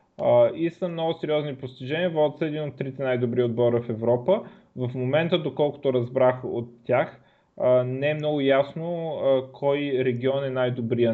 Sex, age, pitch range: male, 20-39, 120-145 Hz